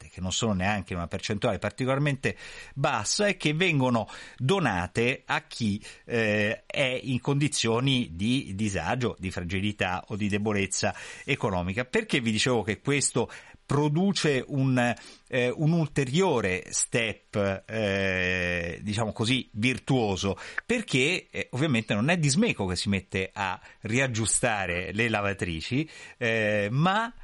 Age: 50-69